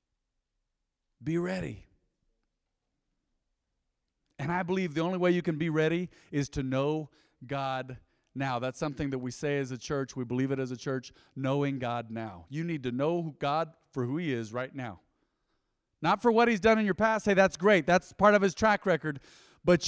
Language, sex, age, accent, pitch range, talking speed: English, male, 40-59, American, 125-175 Hz, 195 wpm